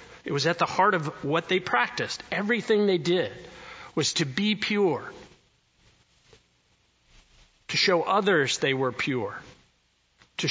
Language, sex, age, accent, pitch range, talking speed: English, male, 40-59, American, 150-205 Hz, 130 wpm